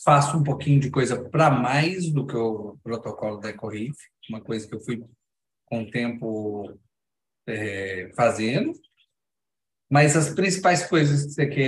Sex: male